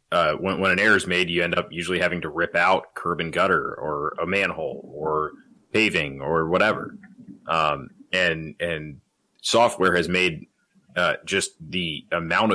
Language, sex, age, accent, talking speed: English, male, 30-49, American, 165 wpm